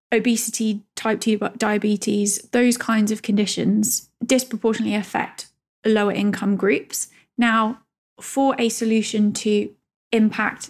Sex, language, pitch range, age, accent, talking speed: female, English, 205-235 Hz, 20-39, British, 105 wpm